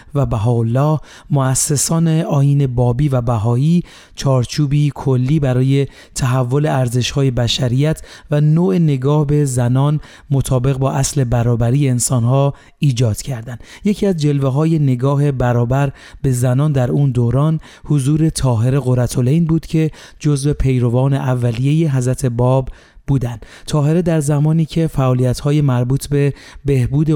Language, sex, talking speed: Persian, male, 125 wpm